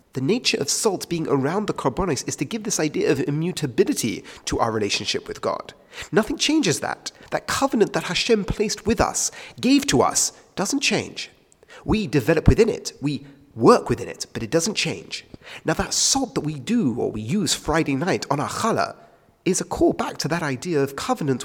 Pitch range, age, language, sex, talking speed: 135-205 Hz, 40-59, English, male, 195 wpm